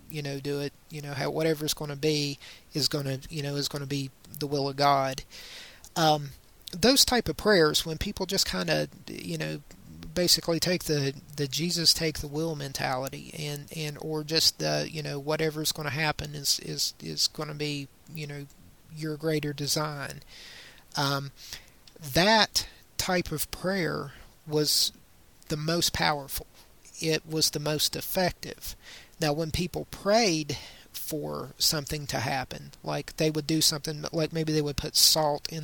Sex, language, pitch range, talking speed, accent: male, English, 140-160 Hz, 160 wpm, American